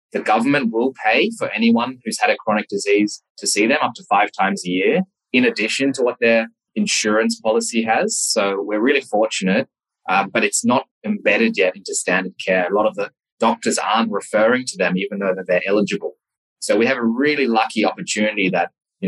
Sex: male